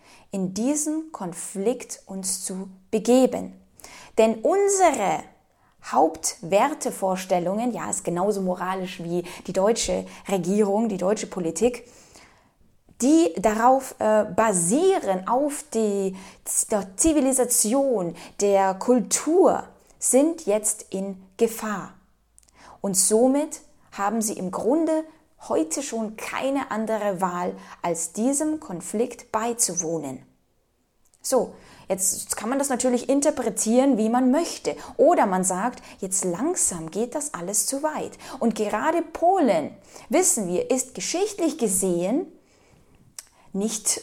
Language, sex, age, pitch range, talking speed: German, female, 20-39, 195-280 Hz, 105 wpm